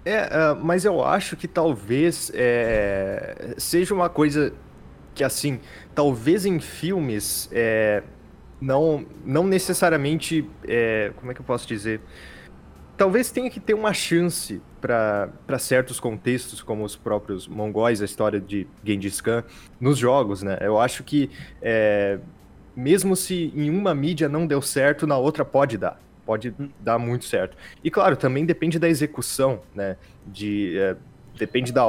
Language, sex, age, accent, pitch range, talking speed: Portuguese, male, 20-39, Brazilian, 105-150 Hz, 145 wpm